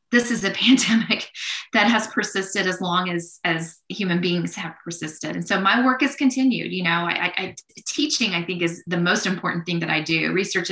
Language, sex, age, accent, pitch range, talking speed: English, female, 20-39, American, 165-195 Hz, 215 wpm